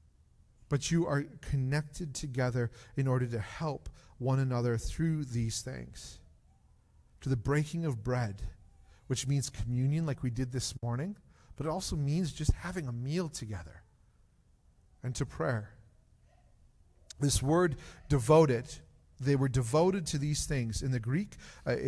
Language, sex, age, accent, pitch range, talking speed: English, male, 40-59, American, 120-155 Hz, 145 wpm